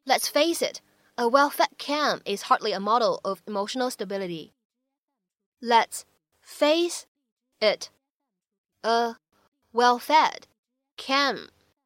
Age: 20-39